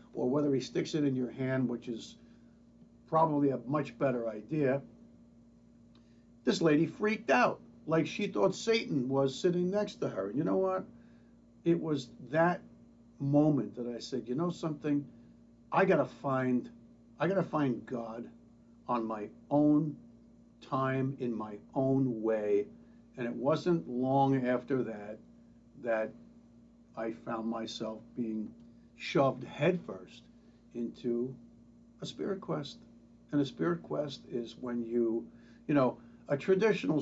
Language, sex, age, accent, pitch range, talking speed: English, male, 60-79, American, 115-150 Hz, 140 wpm